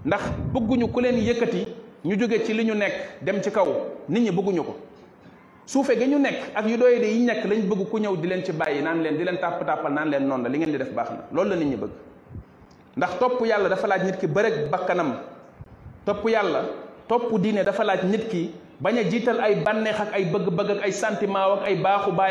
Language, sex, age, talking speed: French, male, 30-49, 130 wpm